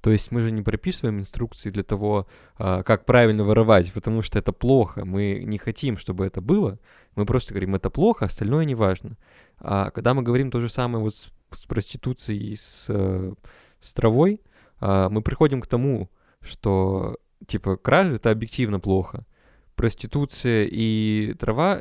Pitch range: 100-120 Hz